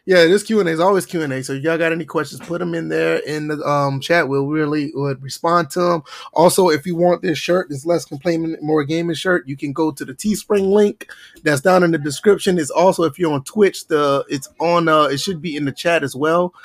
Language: English